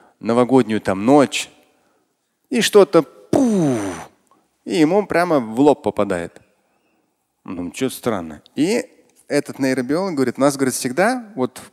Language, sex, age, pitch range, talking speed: Russian, male, 30-49, 120-170 Hz, 125 wpm